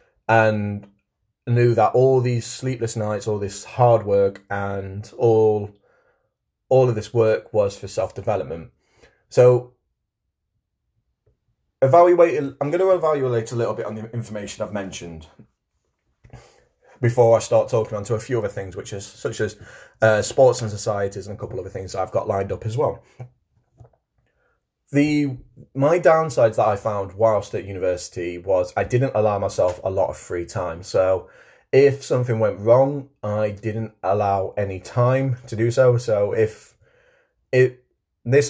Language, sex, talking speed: English, male, 160 wpm